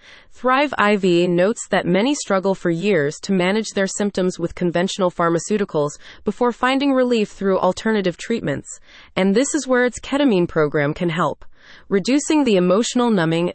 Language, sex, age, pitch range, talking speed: English, female, 30-49, 175-230 Hz, 150 wpm